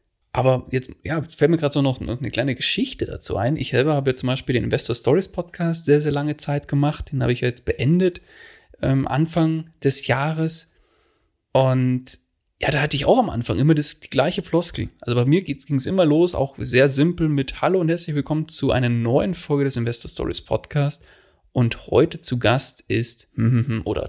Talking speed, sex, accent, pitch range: 195 wpm, male, German, 120-155 Hz